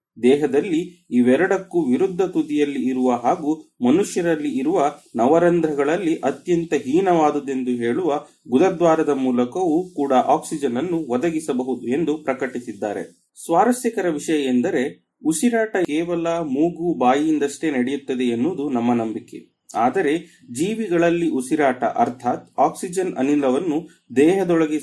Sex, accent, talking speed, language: male, native, 90 wpm, Kannada